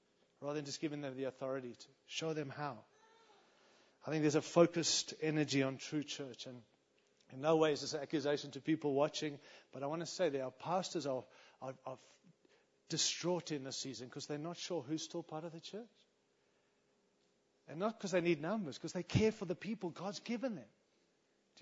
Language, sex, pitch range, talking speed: English, male, 155-245 Hz, 200 wpm